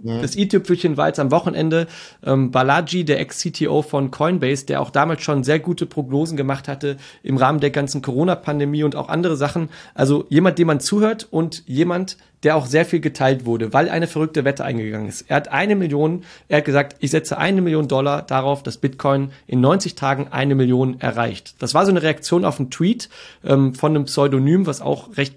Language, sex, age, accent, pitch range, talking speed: German, male, 40-59, German, 135-165 Hz, 205 wpm